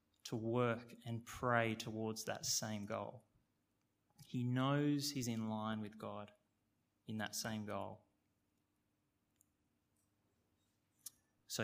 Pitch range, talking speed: 105-130 Hz, 105 wpm